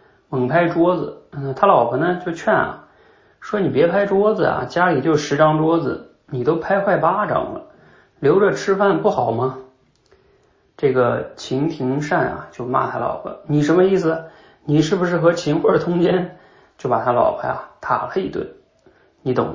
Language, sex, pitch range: Chinese, male, 125-165 Hz